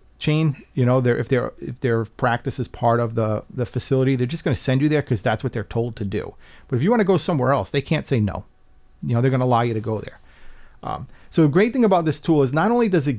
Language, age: English, 40-59